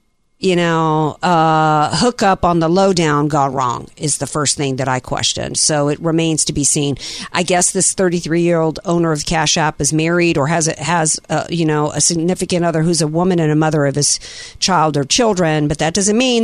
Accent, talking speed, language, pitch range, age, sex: American, 225 wpm, English, 155-210 Hz, 50-69, female